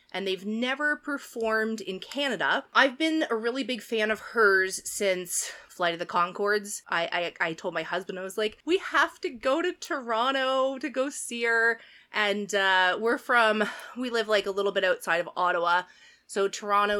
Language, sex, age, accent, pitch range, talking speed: English, female, 20-39, American, 175-235 Hz, 185 wpm